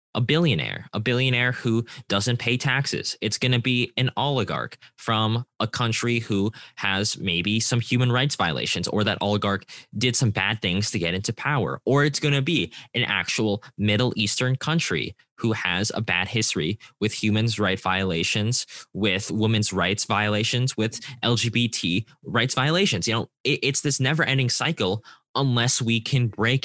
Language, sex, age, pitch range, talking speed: English, male, 10-29, 105-130 Hz, 165 wpm